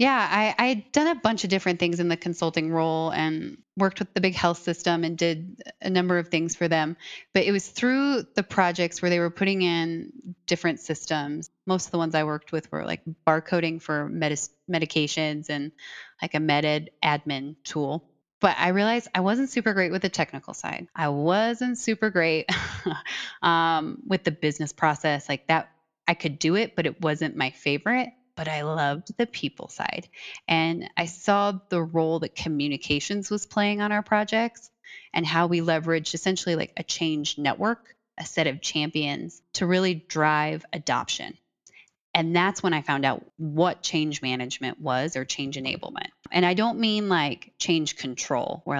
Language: English